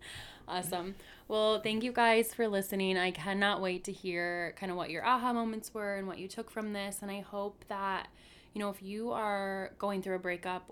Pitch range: 170-195 Hz